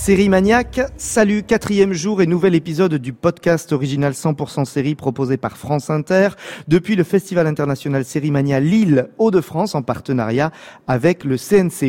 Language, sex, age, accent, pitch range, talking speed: French, male, 40-59, French, 140-195 Hz, 150 wpm